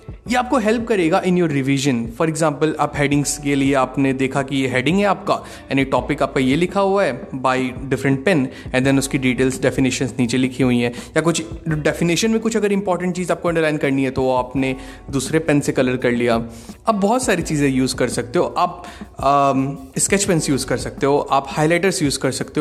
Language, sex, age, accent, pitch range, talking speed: Hindi, male, 30-49, native, 130-165 Hz, 210 wpm